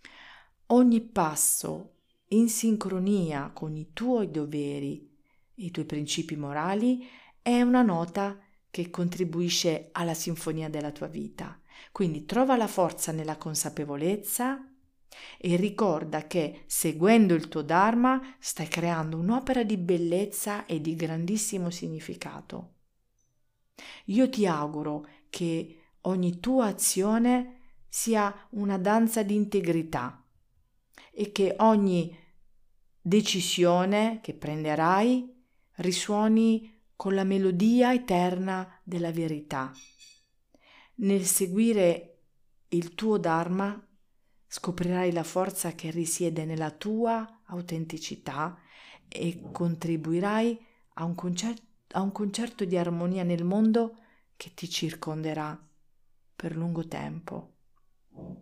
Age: 40-59